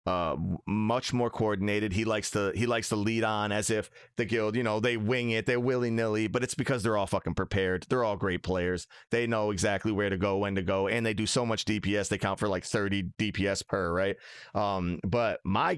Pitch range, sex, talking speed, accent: 100-115 Hz, male, 230 wpm, American